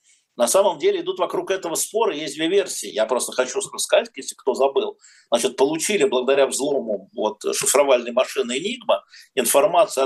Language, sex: Russian, male